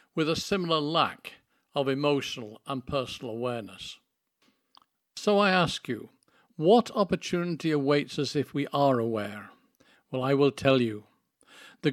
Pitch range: 130-170 Hz